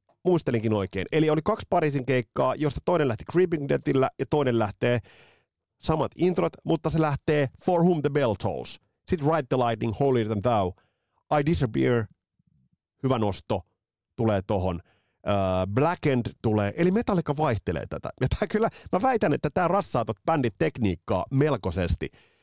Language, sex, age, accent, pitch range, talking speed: Finnish, male, 30-49, native, 95-145 Hz, 145 wpm